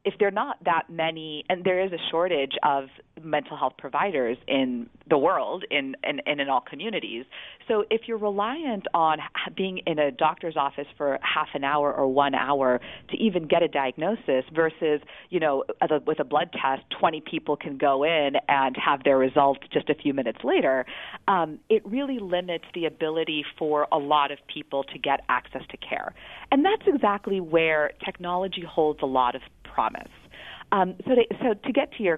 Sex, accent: female, American